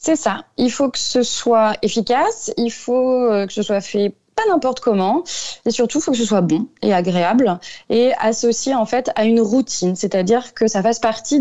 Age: 20-39